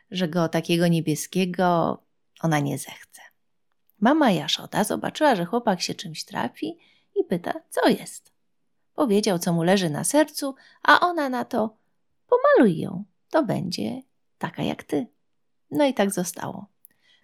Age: 30-49